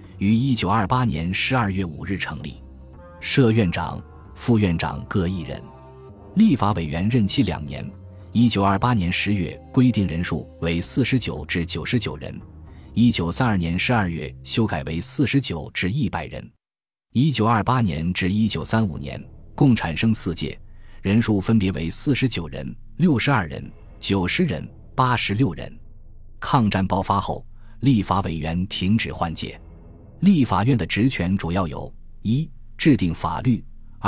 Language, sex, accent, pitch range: Chinese, male, native, 85-115 Hz